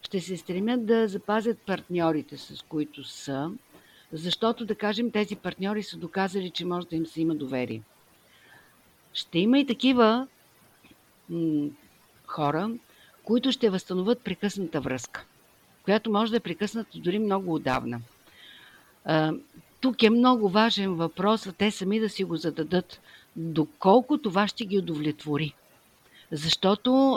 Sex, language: female, Bulgarian